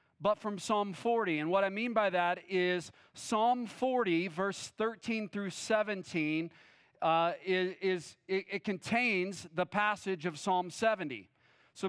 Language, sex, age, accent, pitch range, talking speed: English, male, 40-59, American, 180-210 Hz, 145 wpm